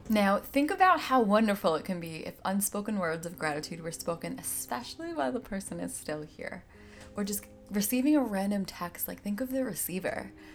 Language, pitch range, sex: English, 185-245 Hz, female